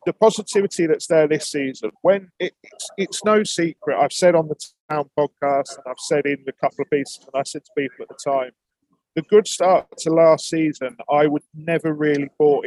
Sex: male